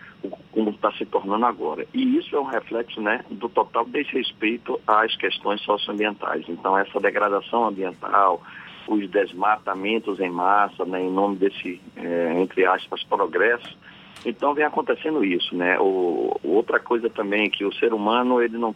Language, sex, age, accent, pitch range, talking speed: Portuguese, male, 40-59, Brazilian, 100-120 Hz, 155 wpm